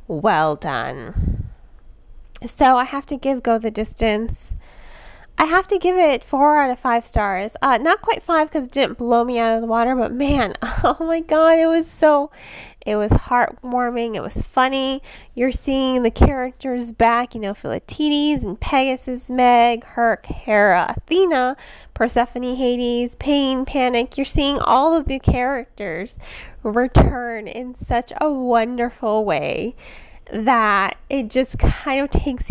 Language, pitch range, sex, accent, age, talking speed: English, 230-275 Hz, female, American, 20-39, 155 wpm